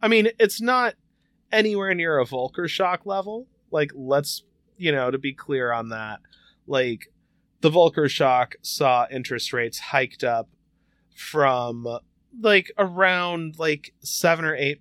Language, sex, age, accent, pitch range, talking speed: English, male, 30-49, American, 115-160 Hz, 140 wpm